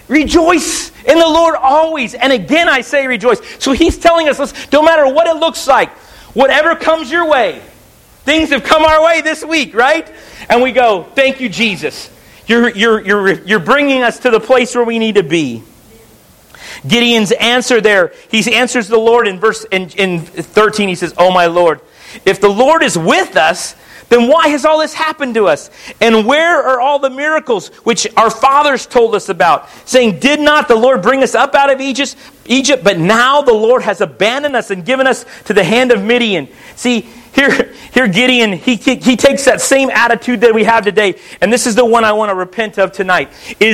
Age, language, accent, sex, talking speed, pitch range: 40-59, English, American, male, 205 wpm, 220-280 Hz